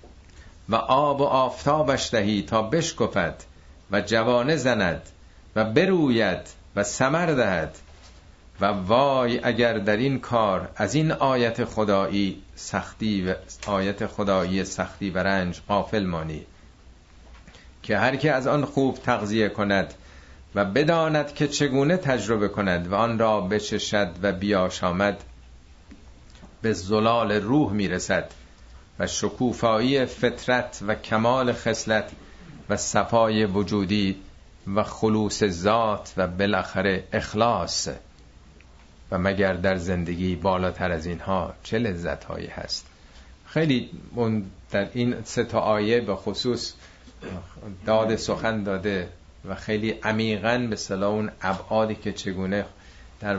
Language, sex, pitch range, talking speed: Persian, male, 90-115 Hz, 115 wpm